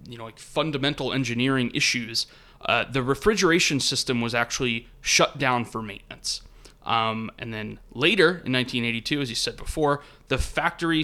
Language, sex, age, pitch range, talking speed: English, male, 30-49, 120-155 Hz, 150 wpm